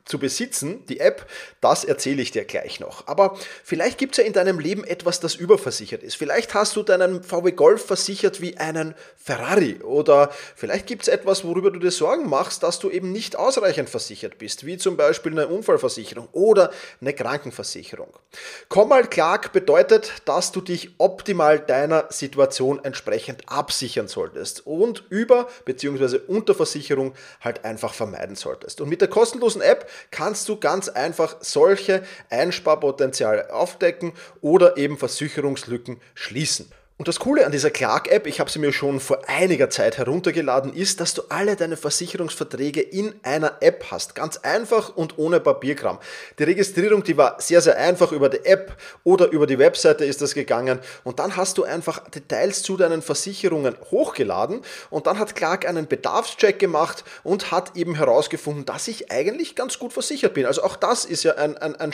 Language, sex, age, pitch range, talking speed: German, male, 30-49, 160-245 Hz, 170 wpm